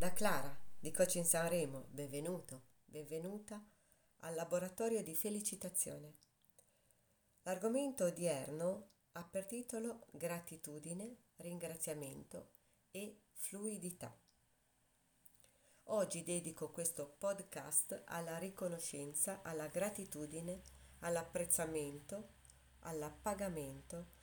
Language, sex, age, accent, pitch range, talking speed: Italian, female, 40-59, native, 155-205 Hz, 75 wpm